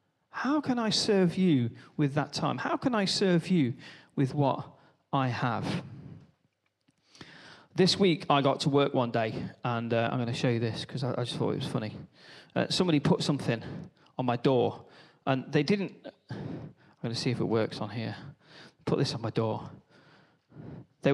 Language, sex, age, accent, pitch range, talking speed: English, male, 30-49, British, 130-175 Hz, 185 wpm